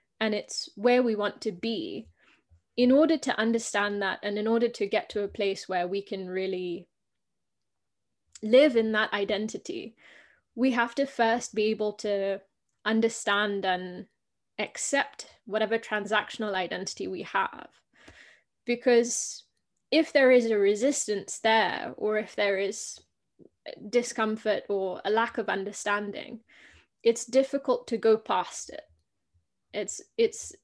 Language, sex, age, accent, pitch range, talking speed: English, female, 20-39, British, 200-240 Hz, 135 wpm